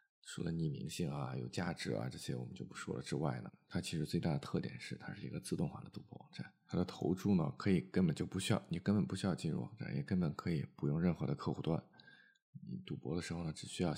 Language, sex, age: Chinese, male, 20-39